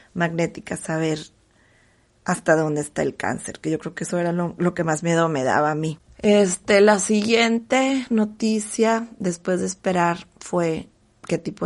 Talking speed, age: 165 wpm, 30-49